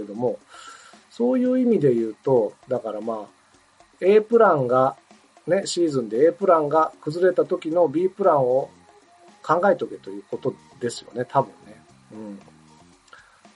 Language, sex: Japanese, male